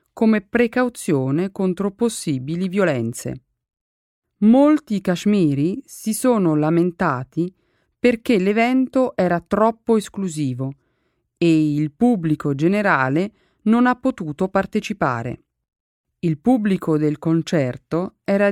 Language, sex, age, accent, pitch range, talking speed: Italian, female, 40-59, native, 145-205 Hz, 90 wpm